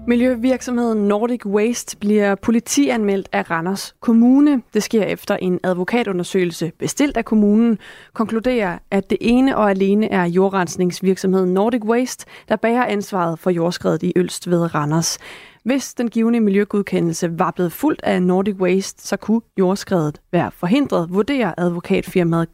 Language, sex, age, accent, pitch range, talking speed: Danish, female, 30-49, native, 185-220 Hz, 140 wpm